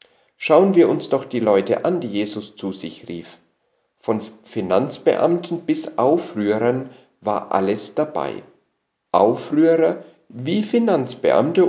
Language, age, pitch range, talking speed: German, 50-69, 115-175 Hz, 115 wpm